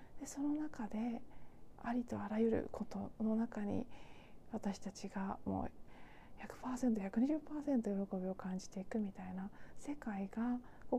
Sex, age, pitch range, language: female, 40-59, 190-250 Hz, Japanese